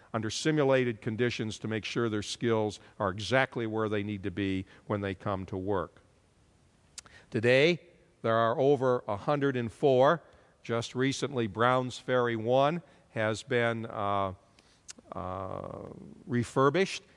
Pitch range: 105-135 Hz